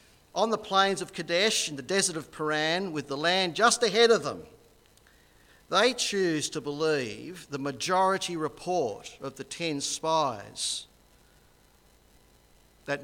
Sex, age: male, 50-69